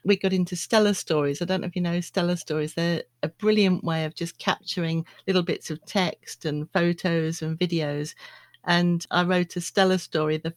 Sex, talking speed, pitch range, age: female, 200 wpm, 160-185 Hz, 50-69